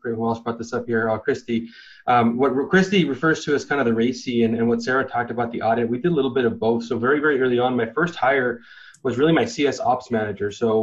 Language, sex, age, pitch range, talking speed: English, male, 20-39, 115-130 Hz, 265 wpm